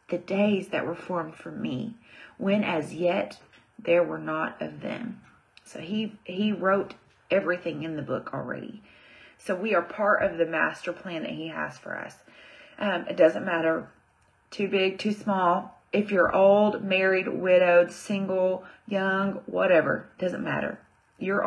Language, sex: English, female